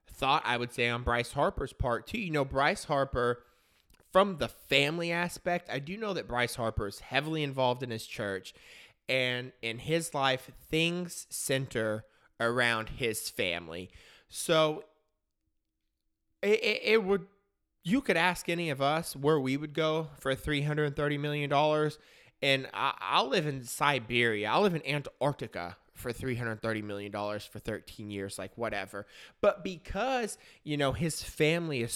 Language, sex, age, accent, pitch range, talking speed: English, male, 20-39, American, 120-170 Hz, 150 wpm